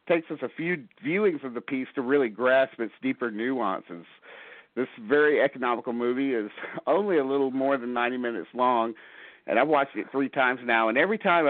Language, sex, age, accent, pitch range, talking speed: English, male, 50-69, American, 110-140 Hz, 195 wpm